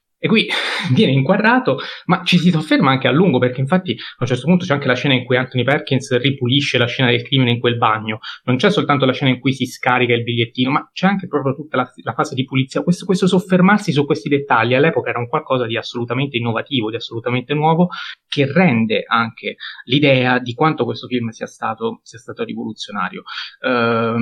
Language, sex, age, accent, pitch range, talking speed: Italian, male, 20-39, native, 115-150 Hz, 205 wpm